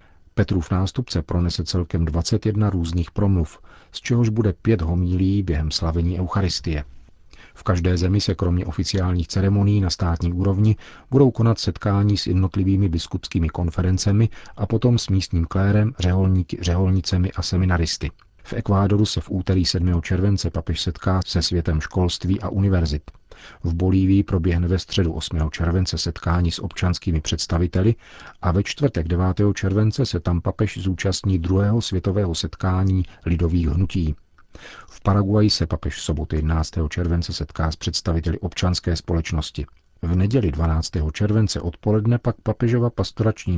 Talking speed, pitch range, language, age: 140 wpm, 85-100 Hz, Czech, 40-59